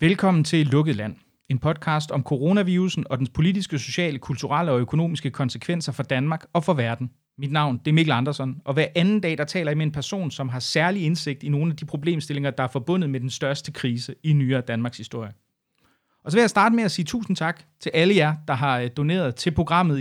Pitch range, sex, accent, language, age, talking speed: 135-175 Hz, male, native, Danish, 30-49, 225 wpm